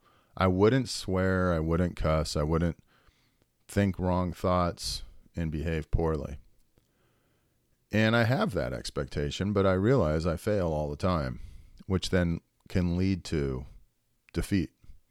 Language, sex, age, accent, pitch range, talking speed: English, male, 40-59, American, 80-100 Hz, 130 wpm